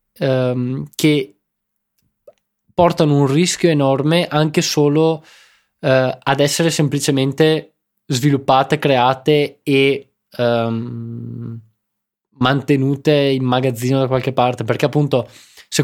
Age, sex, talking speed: 20-39, male, 85 wpm